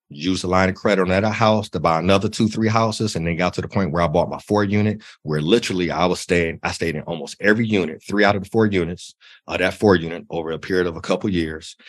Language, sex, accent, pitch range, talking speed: English, male, American, 85-115 Hz, 275 wpm